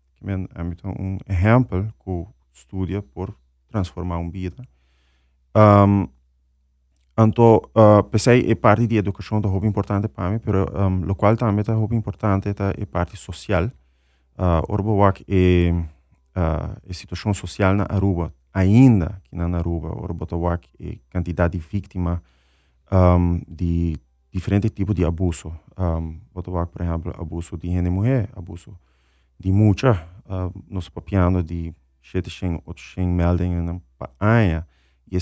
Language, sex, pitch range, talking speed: English, male, 85-100 Hz, 145 wpm